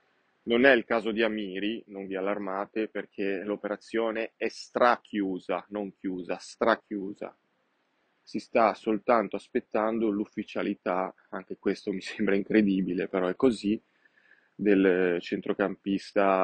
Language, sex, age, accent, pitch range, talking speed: Italian, male, 20-39, native, 95-115 Hz, 115 wpm